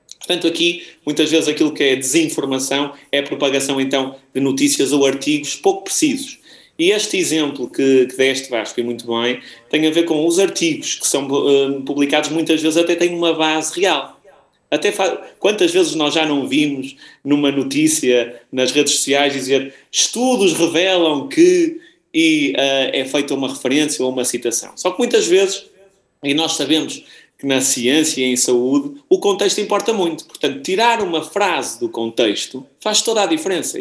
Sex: male